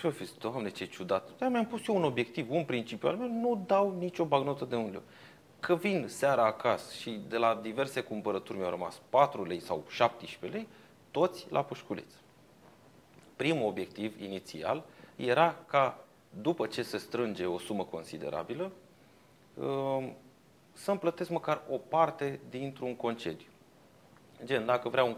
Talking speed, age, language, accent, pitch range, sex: 150 wpm, 30-49, Romanian, native, 110-165 Hz, male